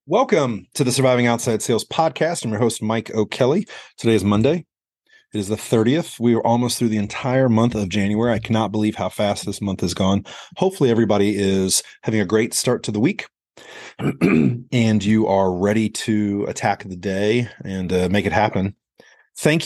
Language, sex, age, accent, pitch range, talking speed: English, male, 30-49, American, 95-115 Hz, 185 wpm